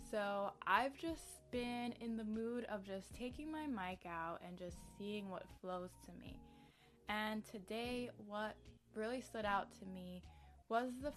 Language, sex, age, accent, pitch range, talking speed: English, female, 20-39, American, 185-225 Hz, 160 wpm